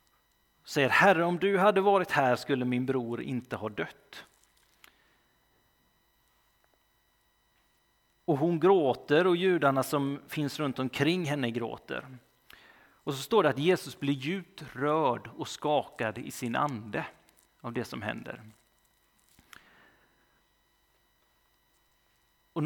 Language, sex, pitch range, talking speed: Swedish, male, 120-160 Hz, 115 wpm